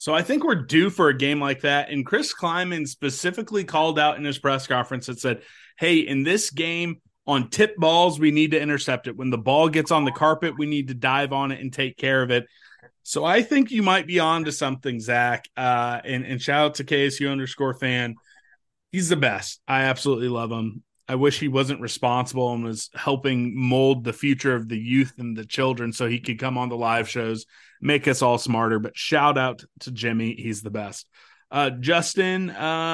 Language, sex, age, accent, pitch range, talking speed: English, male, 30-49, American, 125-165 Hz, 215 wpm